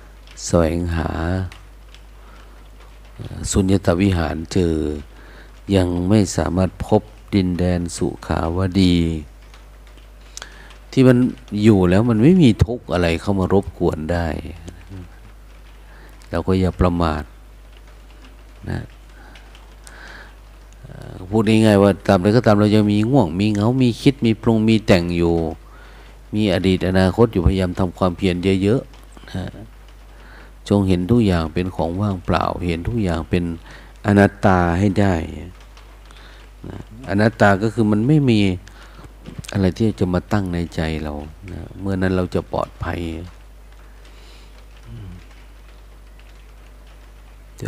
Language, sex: Thai, male